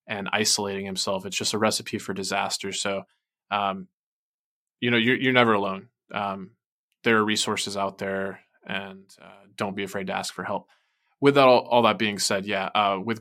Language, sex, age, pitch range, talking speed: English, male, 20-39, 100-115 Hz, 190 wpm